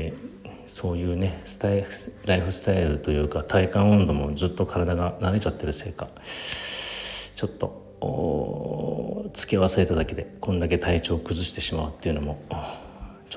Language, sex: Japanese, male